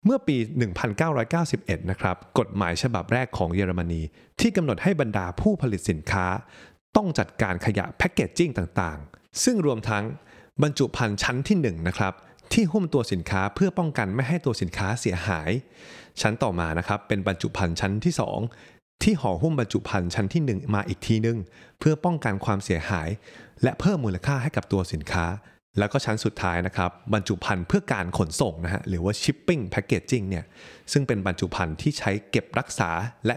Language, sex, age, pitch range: Thai, male, 20-39, 95-135 Hz